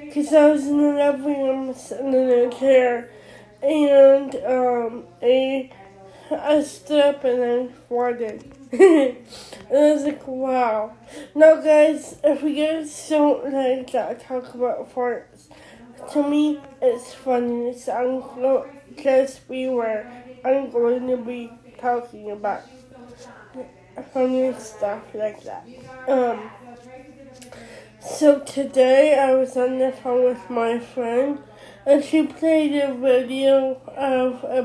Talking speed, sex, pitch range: 130 wpm, female, 245-280 Hz